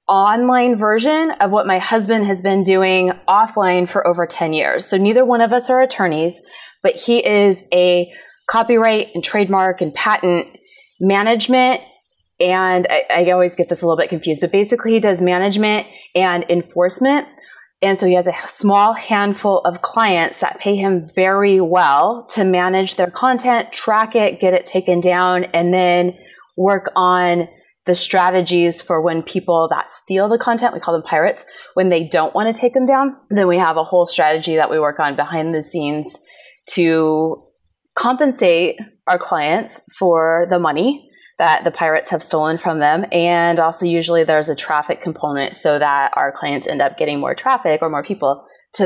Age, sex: 20-39, female